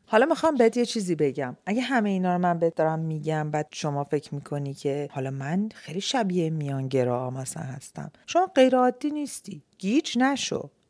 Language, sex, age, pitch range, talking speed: Persian, female, 40-59, 140-205 Hz, 165 wpm